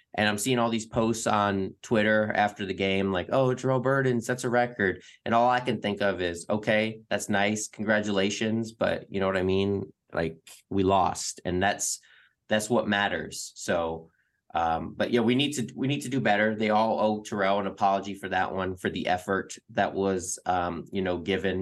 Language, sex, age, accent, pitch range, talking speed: English, male, 20-39, American, 90-110 Hz, 205 wpm